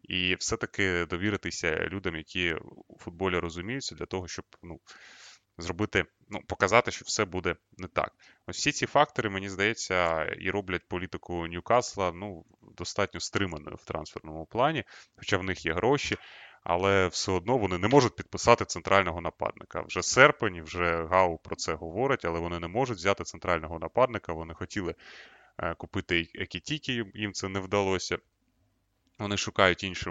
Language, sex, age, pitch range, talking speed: Russian, male, 20-39, 85-105 Hz, 150 wpm